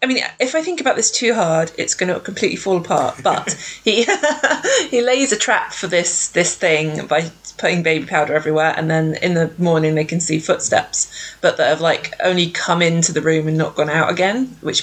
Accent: British